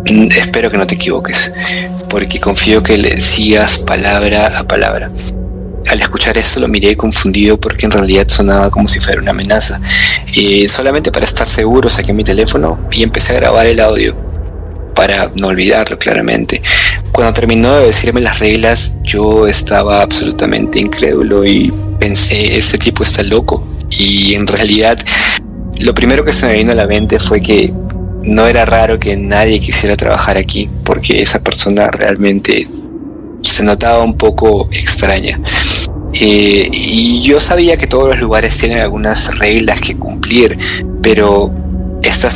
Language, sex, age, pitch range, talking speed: Spanish, male, 20-39, 95-110 Hz, 155 wpm